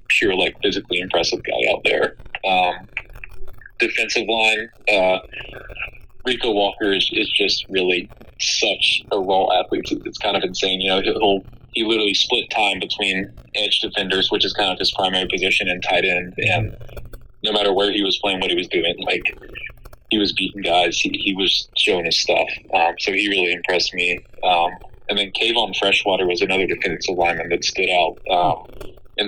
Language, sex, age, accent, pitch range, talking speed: English, male, 20-39, American, 95-110 Hz, 180 wpm